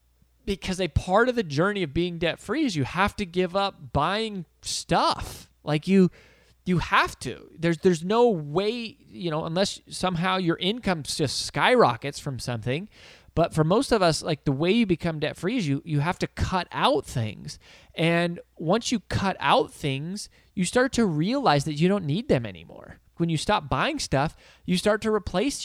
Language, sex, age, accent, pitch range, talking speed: English, male, 20-39, American, 140-185 Hz, 185 wpm